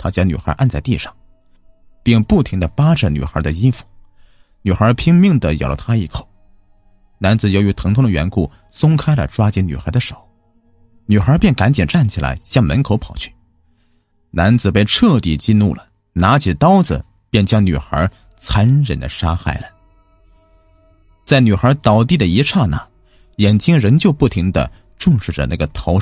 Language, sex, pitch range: Chinese, male, 85-120 Hz